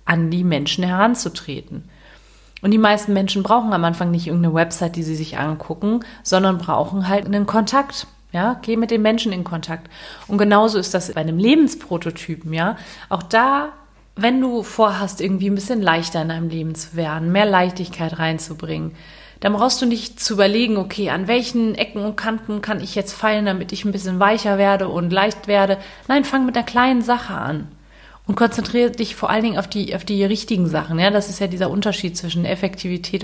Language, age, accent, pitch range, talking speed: German, 30-49, German, 170-210 Hz, 195 wpm